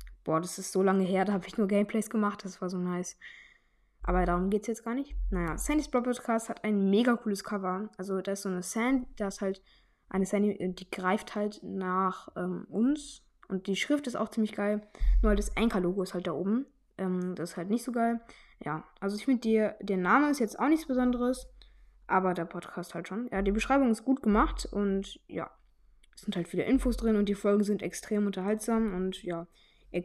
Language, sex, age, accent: German, female, 10-29, German